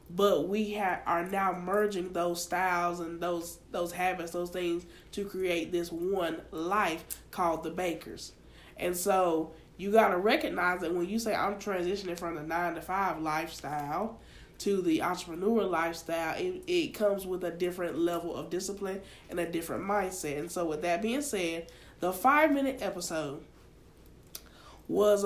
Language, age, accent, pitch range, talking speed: English, 20-39, American, 170-205 Hz, 160 wpm